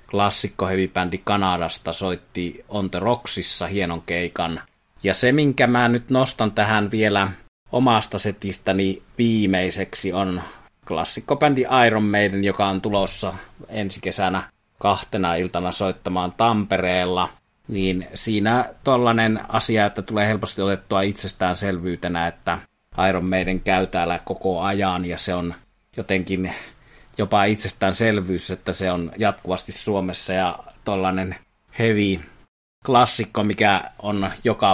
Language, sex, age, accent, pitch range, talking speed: Finnish, male, 30-49, native, 90-105 Hz, 115 wpm